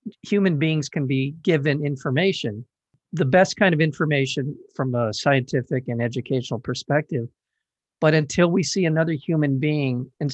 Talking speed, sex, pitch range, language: 145 wpm, male, 130-160 Hz, English